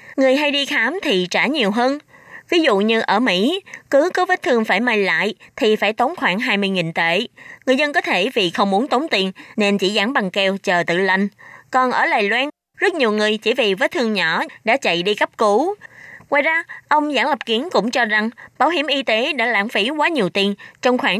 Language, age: Vietnamese, 20-39